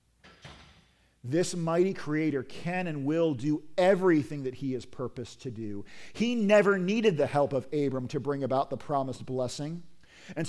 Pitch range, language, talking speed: 115-180 Hz, English, 160 wpm